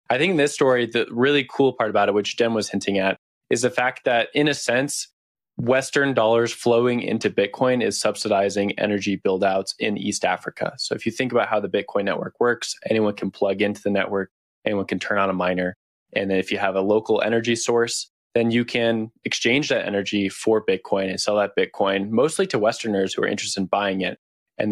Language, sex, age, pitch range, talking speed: English, male, 20-39, 100-120 Hz, 210 wpm